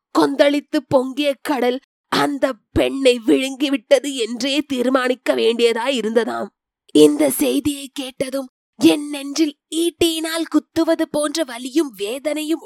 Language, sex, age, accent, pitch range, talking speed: Tamil, female, 20-39, native, 260-320 Hz, 80 wpm